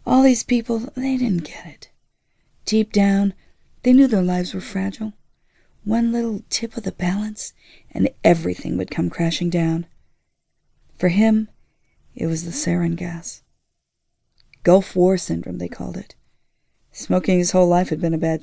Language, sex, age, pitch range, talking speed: English, female, 40-59, 155-185 Hz, 155 wpm